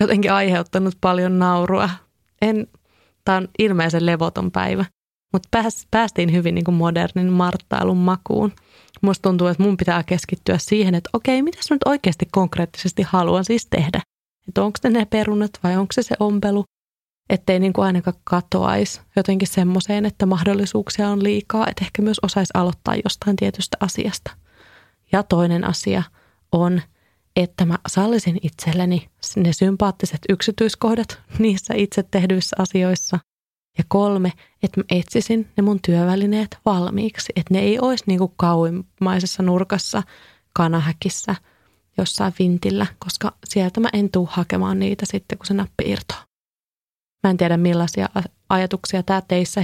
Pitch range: 180-205 Hz